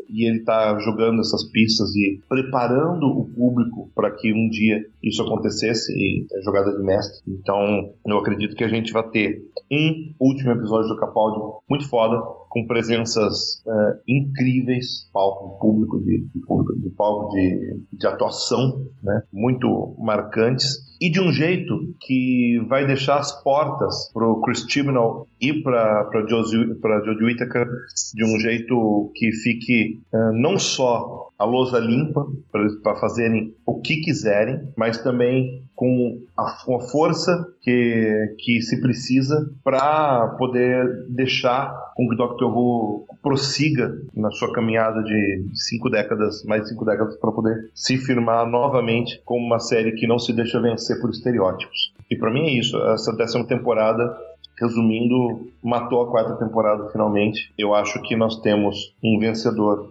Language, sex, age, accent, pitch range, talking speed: Portuguese, male, 40-59, Brazilian, 105-125 Hz, 150 wpm